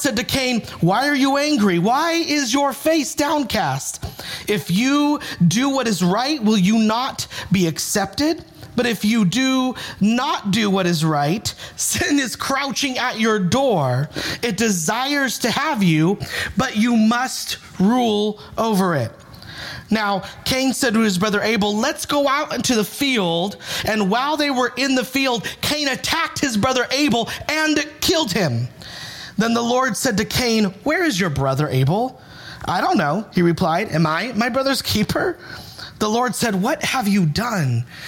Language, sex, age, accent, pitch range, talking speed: English, male, 40-59, American, 185-260 Hz, 165 wpm